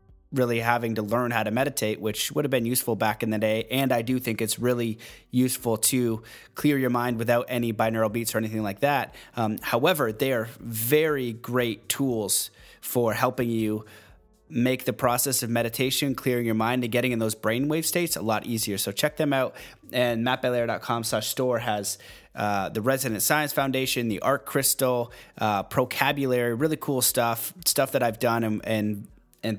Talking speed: 185 wpm